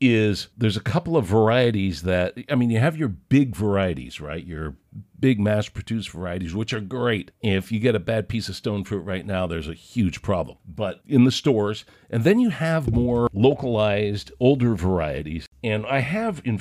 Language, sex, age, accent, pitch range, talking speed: English, male, 50-69, American, 95-125 Hz, 190 wpm